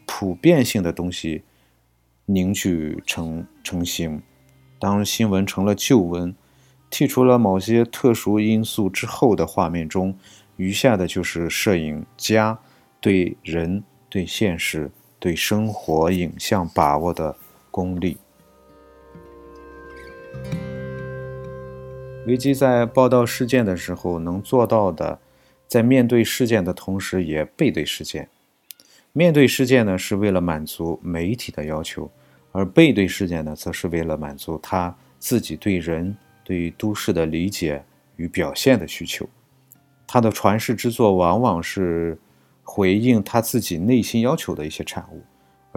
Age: 50-69